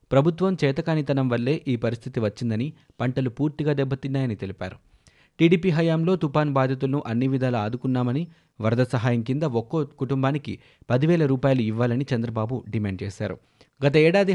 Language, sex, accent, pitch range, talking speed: Telugu, male, native, 115-145 Hz, 125 wpm